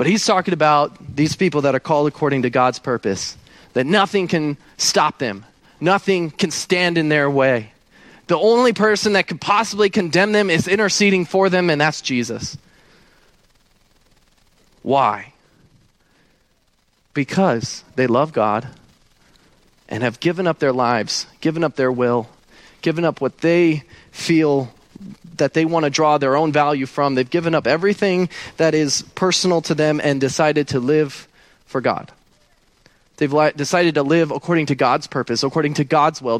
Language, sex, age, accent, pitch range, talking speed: English, male, 30-49, American, 140-185 Hz, 160 wpm